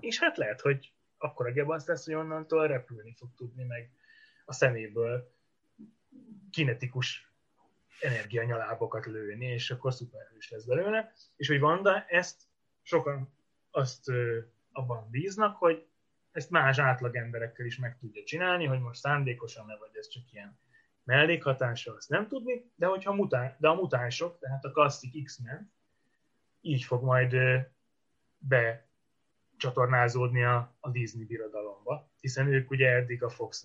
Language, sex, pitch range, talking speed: Hungarian, male, 120-155 Hz, 135 wpm